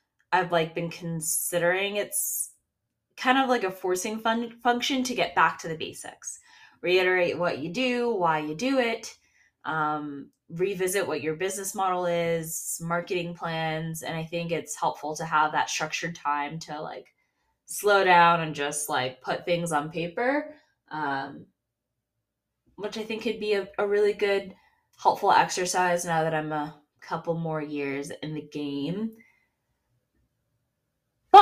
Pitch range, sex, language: 160-235 Hz, female, English